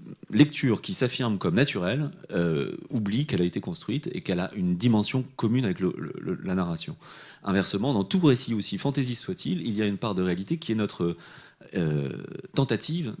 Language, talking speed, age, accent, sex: French, 185 wpm, 30-49, French, male